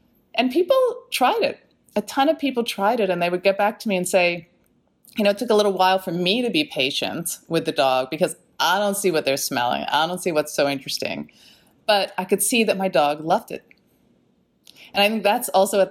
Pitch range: 170-225 Hz